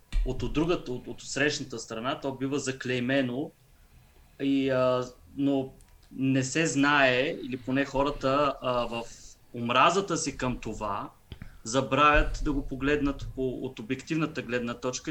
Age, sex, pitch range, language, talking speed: 20-39, male, 120-150 Hz, Bulgarian, 130 wpm